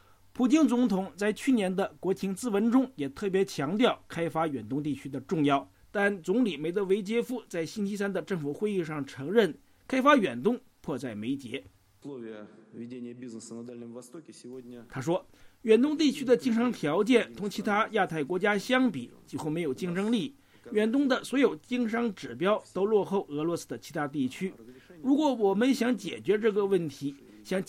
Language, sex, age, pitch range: English, male, 50-69, 145-230 Hz